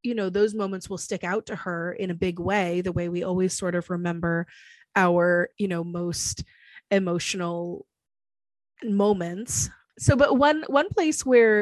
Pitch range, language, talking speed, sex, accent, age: 170-215 Hz, English, 165 wpm, female, American, 20-39